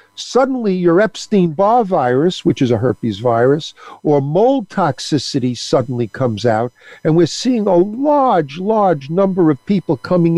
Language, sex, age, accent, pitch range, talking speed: English, male, 50-69, American, 145-205 Hz, 145 wpm